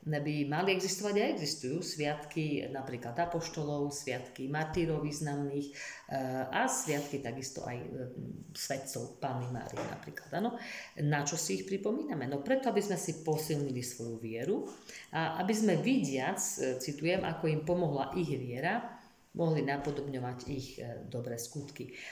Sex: female